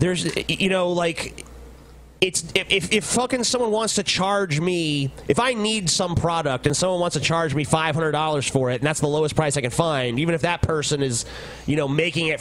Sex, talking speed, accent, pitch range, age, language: male, 215 wpm, American, 150-180 Hz, 30-49, English